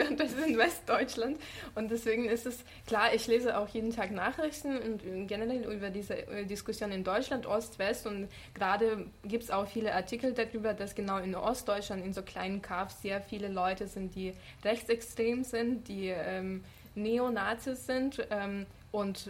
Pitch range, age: 200-235 Hz, 20-39